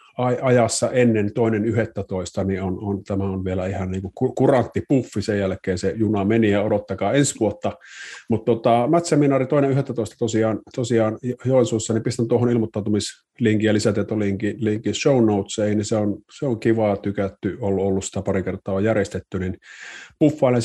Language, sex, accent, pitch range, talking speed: Finnish, male, native, 100-120 Hz, 165 wpm